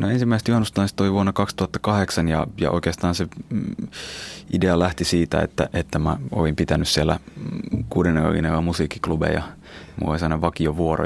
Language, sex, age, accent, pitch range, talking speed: Finnish, male, 20-39, native, 80-90 Hz, 130 wpm